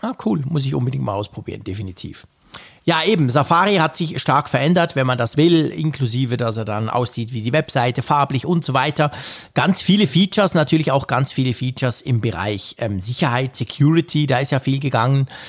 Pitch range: 125-170 Hz